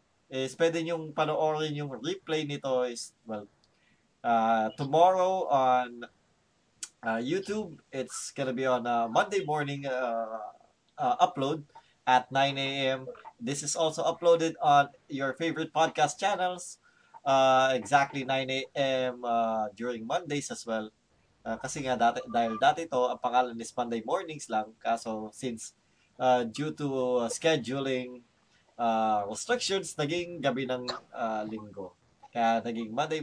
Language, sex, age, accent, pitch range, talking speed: Filipino, male, 20-39, native, 125-155 Hz, 125 wpm